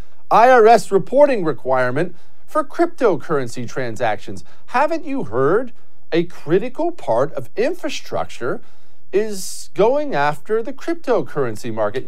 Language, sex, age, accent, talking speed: English, male, 40-59, American, 100 wpm